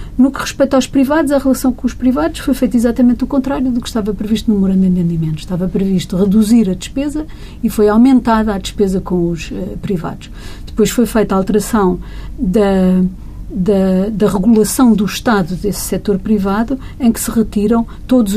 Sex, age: female, 50-69